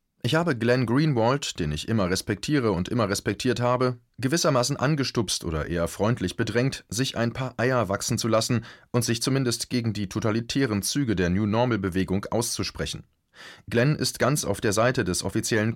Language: German